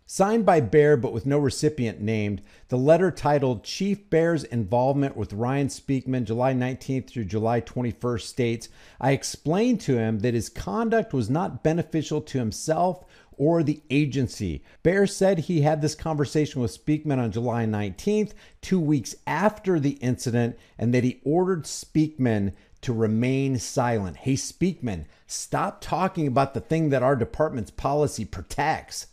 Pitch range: 120-175 Hz